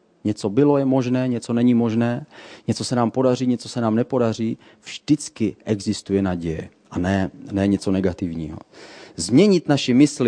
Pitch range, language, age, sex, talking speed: 110-135 Hz, Czech, 30-49, male, 150 wpm